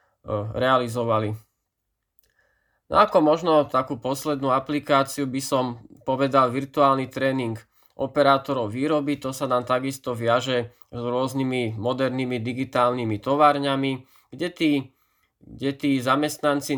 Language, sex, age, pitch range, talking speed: Slovak, male, 20-39, 120-140 Hz, 105 wpm